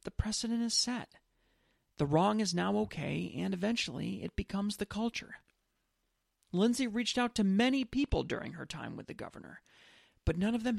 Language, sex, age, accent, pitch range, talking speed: English, male, 40-59, American, 175-230 Hz, 175 wpm